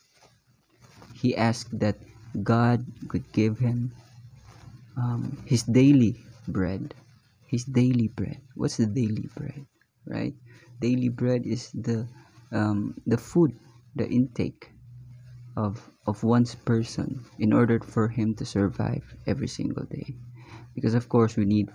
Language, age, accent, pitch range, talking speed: English, 20-39, Filipino, 110-125 Hz, 125 wpm